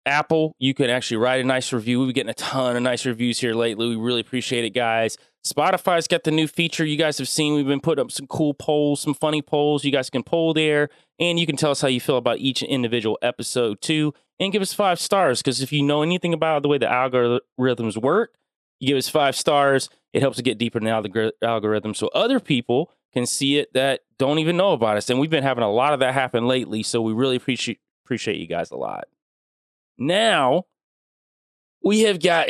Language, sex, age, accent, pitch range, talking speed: English, male, 20-39, American, 120-155 Hz, 230 wpm